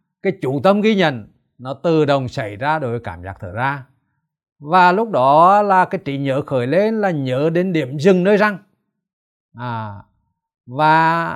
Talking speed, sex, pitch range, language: 175 wpm, male, 125-180 Hz, Vietnamese